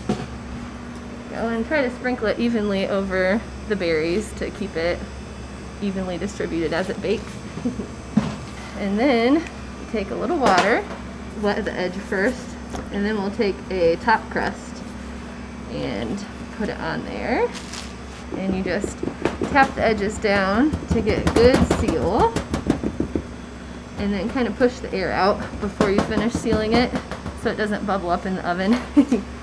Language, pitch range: English, 175-230 Hz